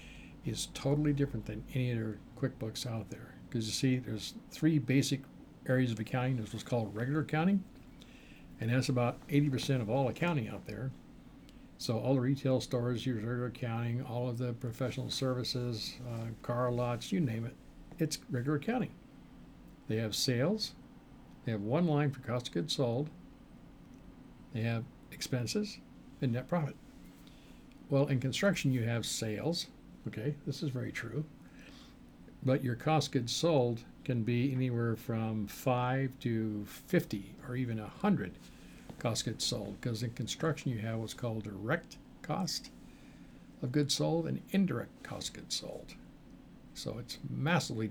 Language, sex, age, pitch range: English, male, 60-79, 115-140 Hz